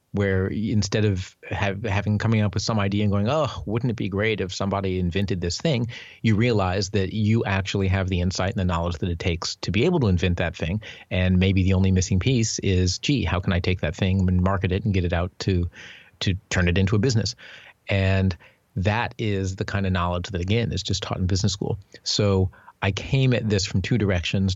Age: 30-49